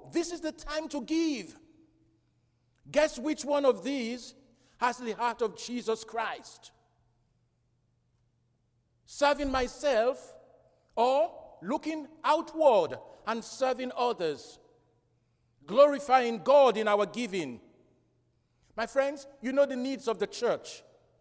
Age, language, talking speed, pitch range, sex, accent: 50-69, English, 110 wpm, 165-280 Hz, male, Nigerian